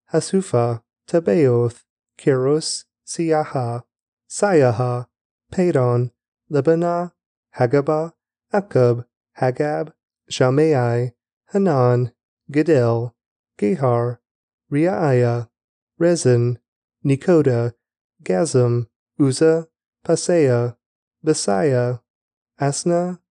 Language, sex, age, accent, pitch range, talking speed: English, male, 30-49, American, 120-160 Hz, 55 wpm